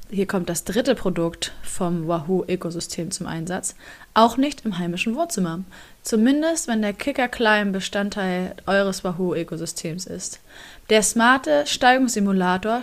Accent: German